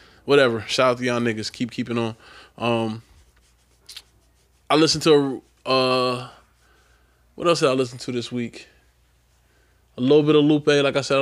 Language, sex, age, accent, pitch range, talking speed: English, male, 20-39, American, 110-125 Hz, 160 wpm